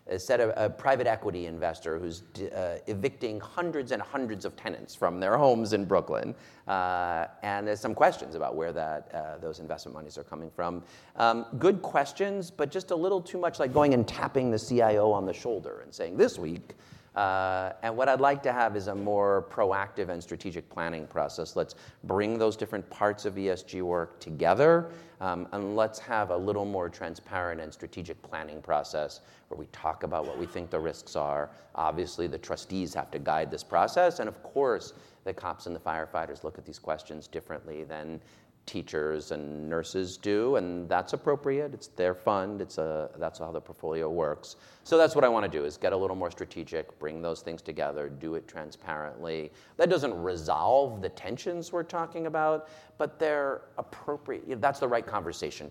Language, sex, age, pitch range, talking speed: English, male, 40-59, 85-140 Hz, 190 wpm